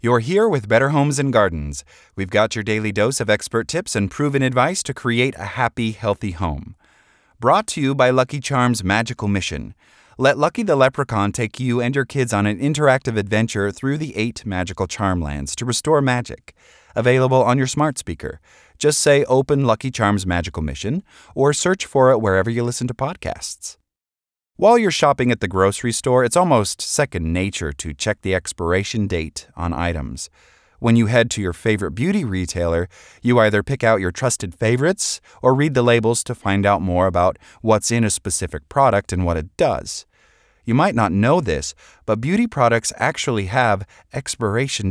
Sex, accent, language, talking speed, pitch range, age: male, American, English, 185 wpm, 95-130 Hz, 30-49